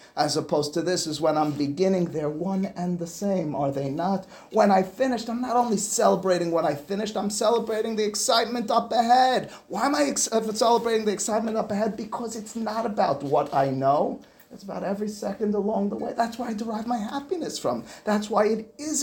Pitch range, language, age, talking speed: 155-215 Hz, English, 30-49, 210 wpm